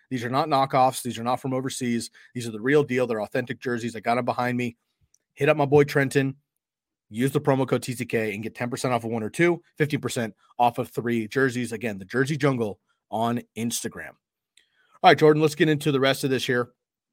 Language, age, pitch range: English, 30-49, 120-150 Hz